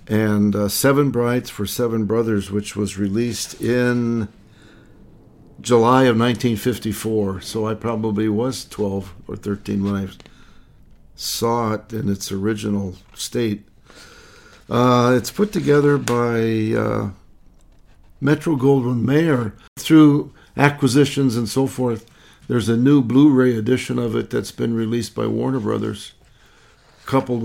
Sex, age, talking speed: male, 60-79, 120 wpm